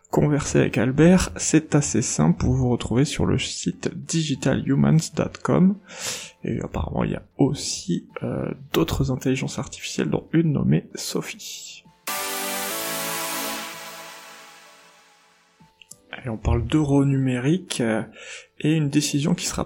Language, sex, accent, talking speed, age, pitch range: French, male, French, 120 wpm, 20-39, 120-155 Hz